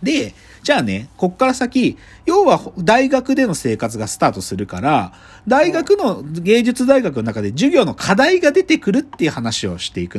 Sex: male